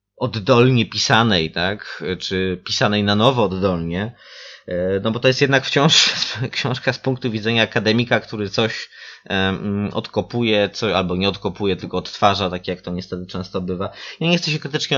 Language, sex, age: Polish, male, 20-39